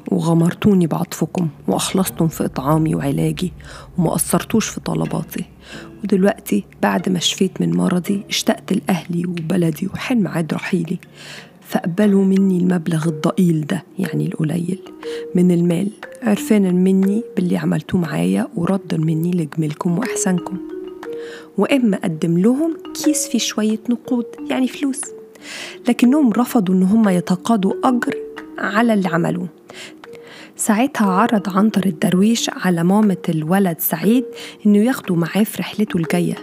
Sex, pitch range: female, 175-225 Hz